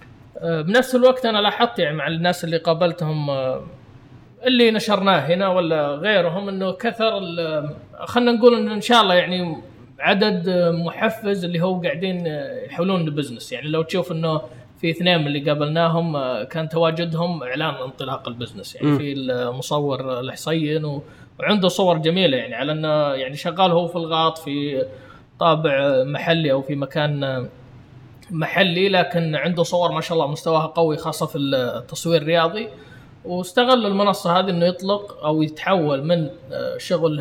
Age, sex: 20-39, male